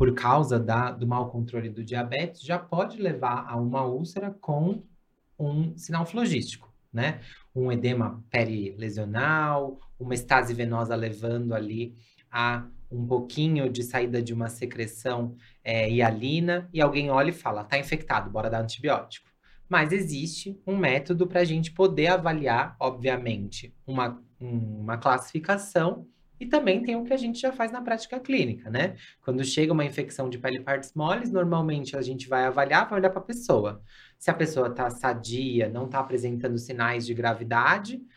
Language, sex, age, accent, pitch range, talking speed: Portuguese, male, 20-39, Brazilian, 120-170 Hz, 160 wpm